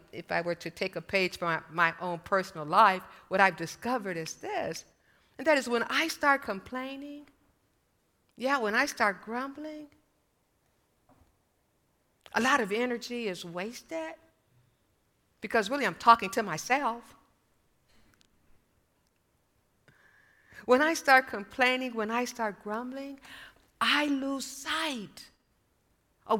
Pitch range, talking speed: 160-235 Hz, 120 wpm